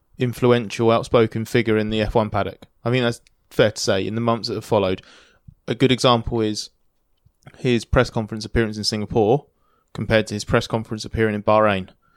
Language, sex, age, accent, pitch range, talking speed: English, male, 20-39, British, 110-145 Hz, 180 wpm